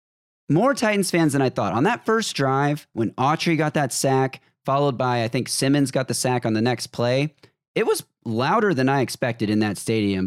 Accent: American